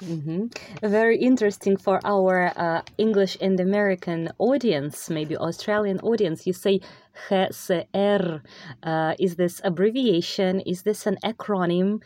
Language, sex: English, female